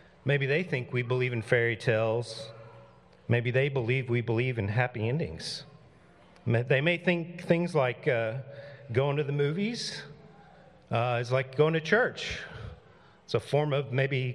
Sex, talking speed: male, 155 wpm